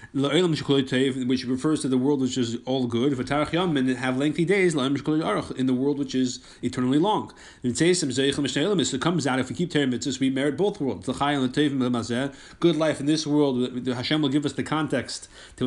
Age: 30-49